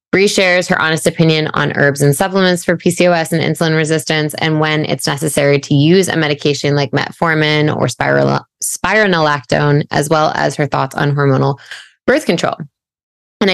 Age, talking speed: 20-39, 155 wpm